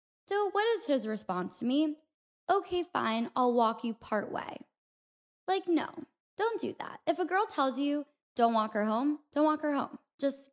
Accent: American